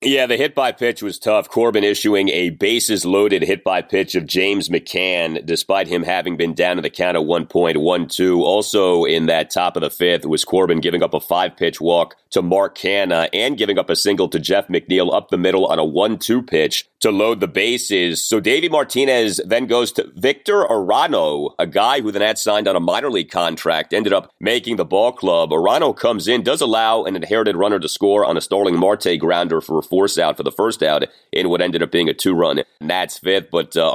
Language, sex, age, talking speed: English, male, 30-49, 210 wpm